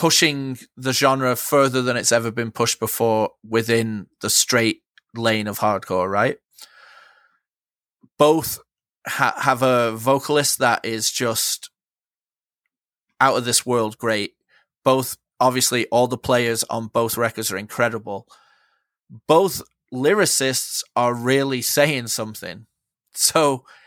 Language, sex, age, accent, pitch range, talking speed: English, male, 30-49, British, 115-135 Hz, 115 wpm